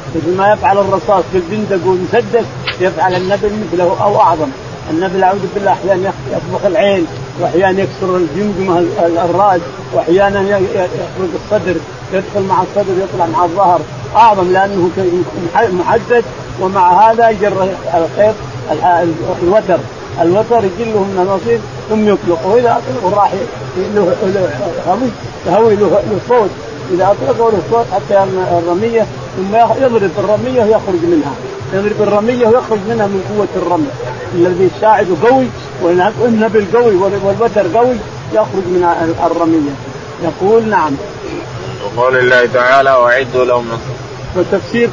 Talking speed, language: 115 wpm, Arabic